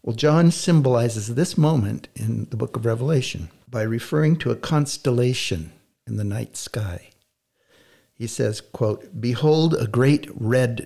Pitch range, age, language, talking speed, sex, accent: 105-130 Hz, 60-79, English, 145 wpm, male, American